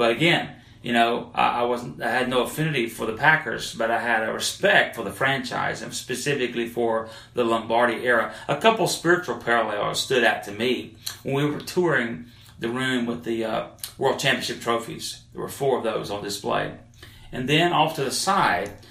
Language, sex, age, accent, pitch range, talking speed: English, male, 30-49, American, 115-130 Hz, 190 wpm